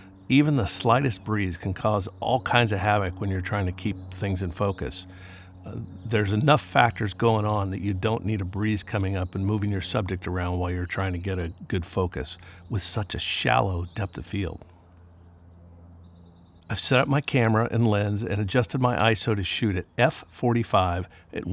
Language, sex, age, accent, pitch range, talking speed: English, male, 50-69, American, 90-115 Hz, 190 wpm